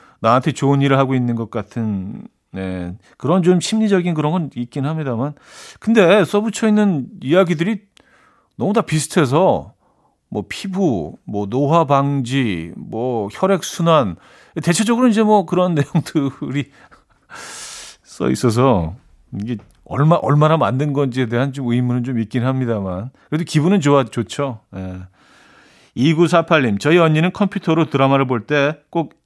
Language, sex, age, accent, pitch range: Korean, male, 40-59, native, 115-165 Hz